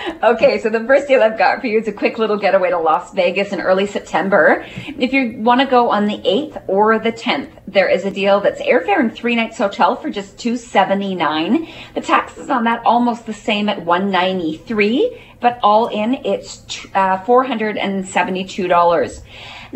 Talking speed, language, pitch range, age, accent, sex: 175 wpm, English, 185-240 Hz, 30-49, American, female